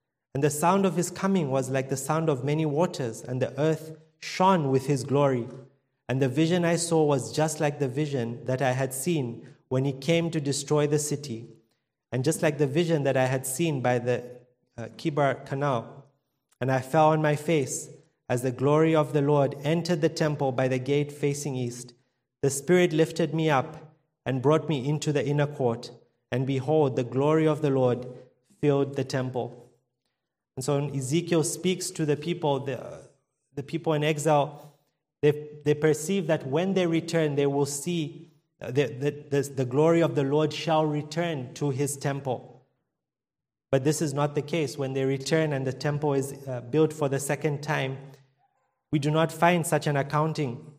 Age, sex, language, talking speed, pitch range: 30-49, male, English, 190 wpm, 135-155 Hz